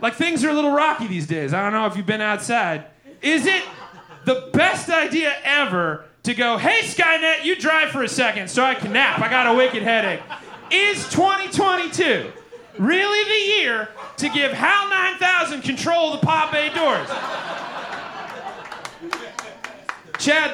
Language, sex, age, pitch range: English, male, 30-49, 220-315 Hz